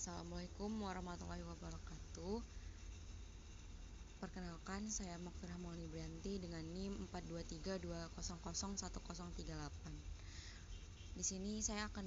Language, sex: Indonesian, female